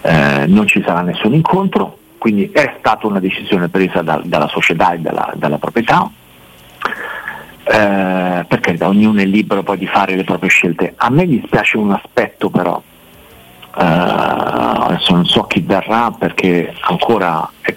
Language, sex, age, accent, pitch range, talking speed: Italian, male, 50-69, native, 90-110 Hz, 155 wpm